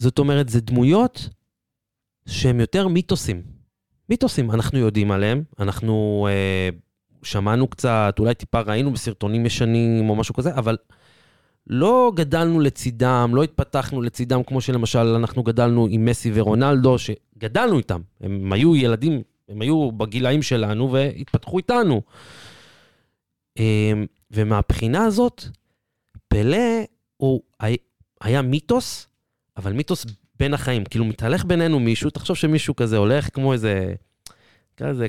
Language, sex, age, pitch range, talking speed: Hebrew, male, 30-49, 110-145 Hz, 120 wpm